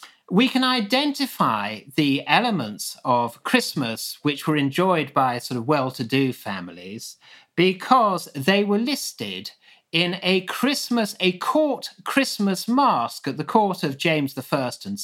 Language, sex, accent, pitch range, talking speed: English, male, British, 140-215 Hz, 130 wpm